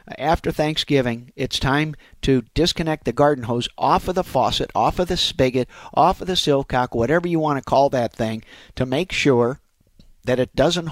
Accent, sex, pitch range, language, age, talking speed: American, male, 120-155 Hz, English, 50-69, 185 wpm